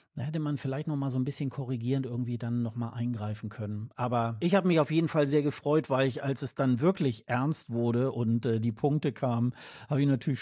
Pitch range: 115-145 Hz